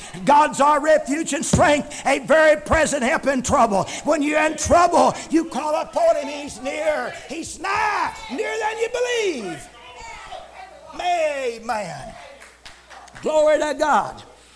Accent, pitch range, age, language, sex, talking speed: American, 255-345 Hz, 60-79, English, male, 125 wpm